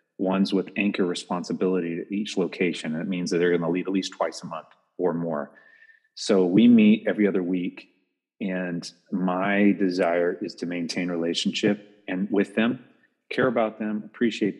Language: English